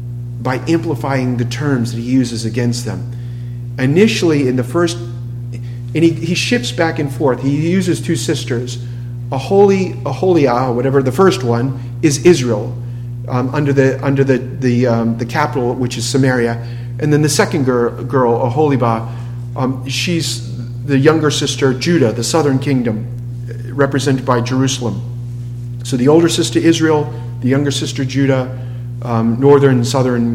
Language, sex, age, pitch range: English, male, 40-59, 120-140 Hz